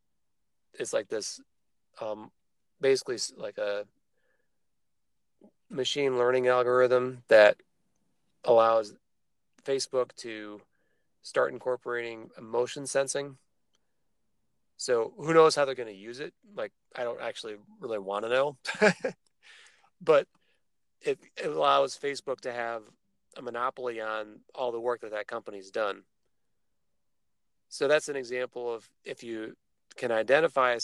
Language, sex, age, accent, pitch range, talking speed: English, male, 30-49, American, 115-165 Hz, 120 wpm